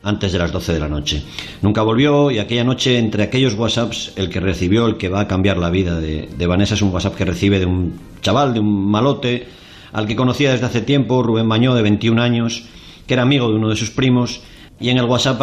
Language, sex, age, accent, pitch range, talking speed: Spanish, male, 40-59, Spanish, 100-120 Hz, 240 wpm